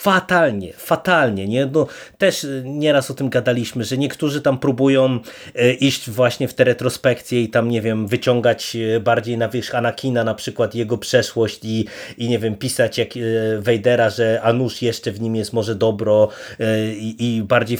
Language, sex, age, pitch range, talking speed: Polish, male, 30-49, 115-145 Hz, 165 wpm